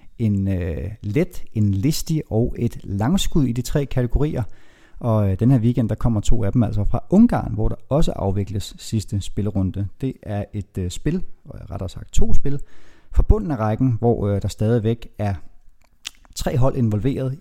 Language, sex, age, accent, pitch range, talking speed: Danish, male, 30-49, native, 100-130 Hz, 180 wpm